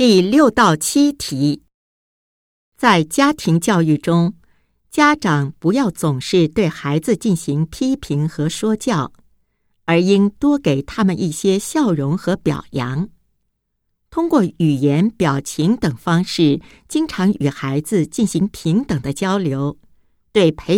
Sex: female